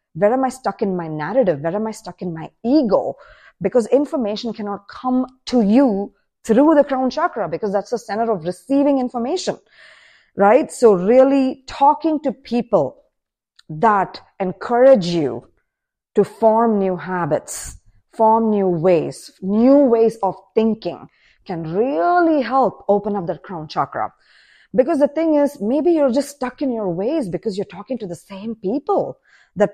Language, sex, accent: English, female, Indian